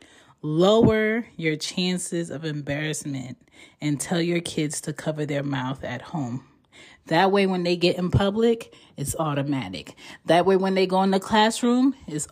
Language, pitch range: English, 155-215 Hz